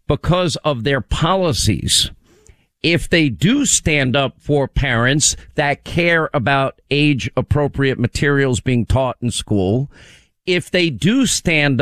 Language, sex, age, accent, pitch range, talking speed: English, male, 50-69, American, 125-155 Hz, 125 wpm